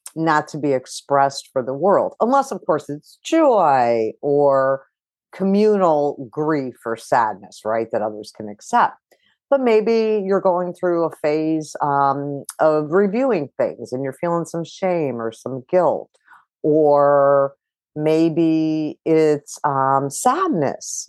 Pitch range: 145-215 Hz